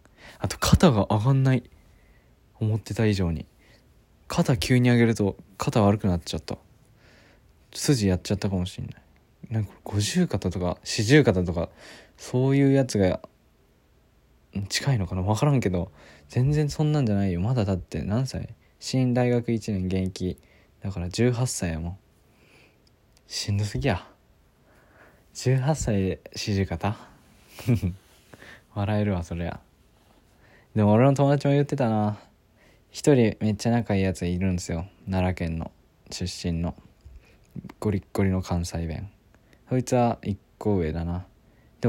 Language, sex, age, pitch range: Japanese, male, 20-39, 90-120 Hz